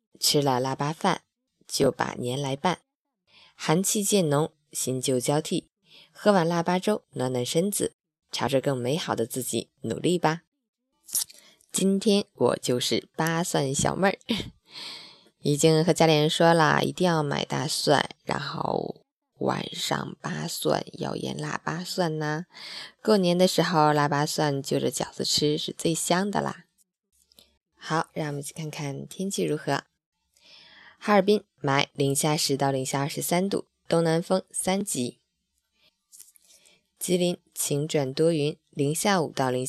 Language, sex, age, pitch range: Chinese, female, 20-39, 140-180 Hz